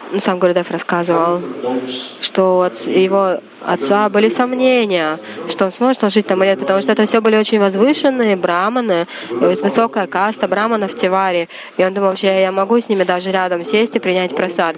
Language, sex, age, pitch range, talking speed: Russian, female, 20-39, 185-215 Hz, 185 wpm